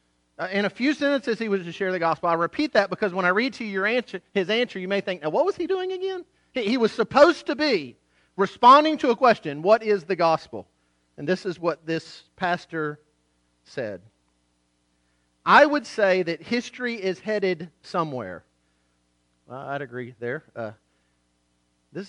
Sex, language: male, English